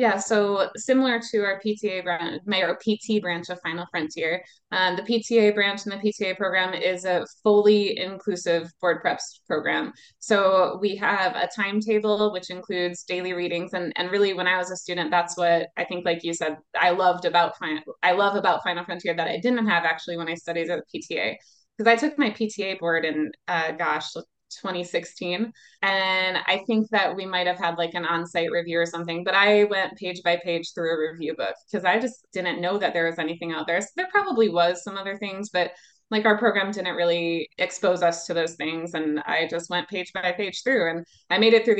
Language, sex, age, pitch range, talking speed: English, female, 20-39, 170-200 Hz, 210 wpm